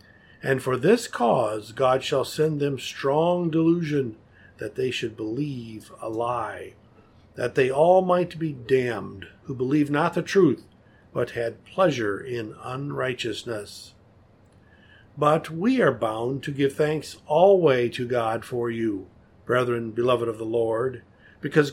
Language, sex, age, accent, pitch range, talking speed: English, male, 50-69, American, 115-165 Hz, 140 wpm